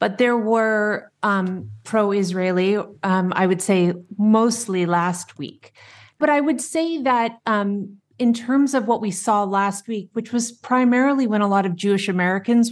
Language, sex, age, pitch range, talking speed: English, female, 30-49, 170-210 Hz, 160 wpm